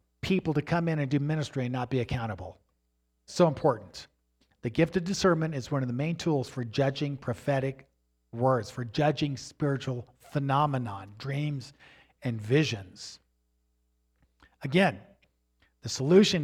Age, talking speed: 50-69, 135 wpm